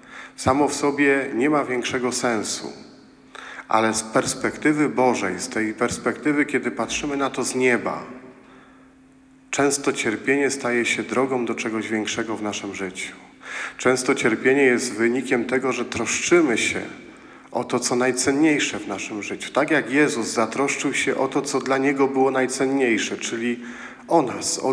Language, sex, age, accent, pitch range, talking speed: Polish, male, 40-59, native, 115-140 Hz, 150 wpm